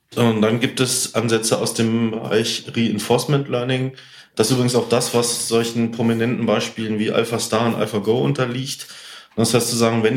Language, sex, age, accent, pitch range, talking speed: German, male, 30-49, German, 110-125 Hz, 185 wpm